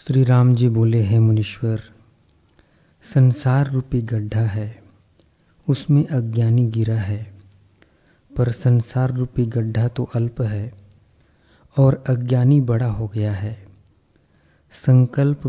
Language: Hindi